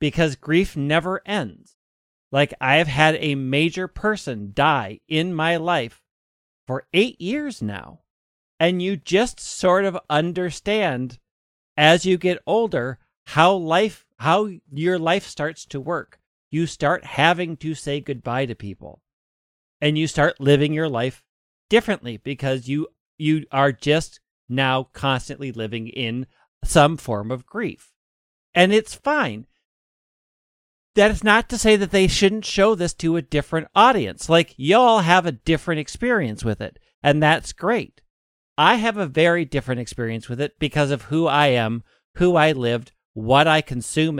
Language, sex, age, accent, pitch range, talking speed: English, male, 40-59, American, 130-175 Hz, 150 wpm